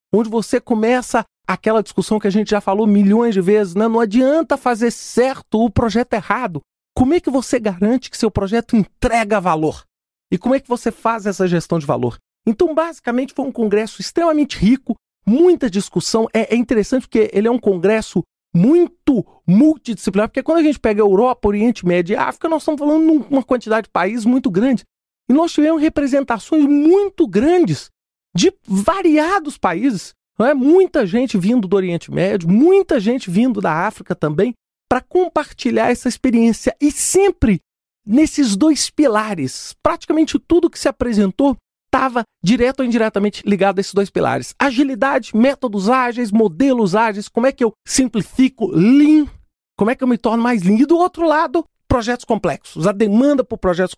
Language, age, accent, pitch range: Portuguese, 40-59, Brazilian, 210-275 Hz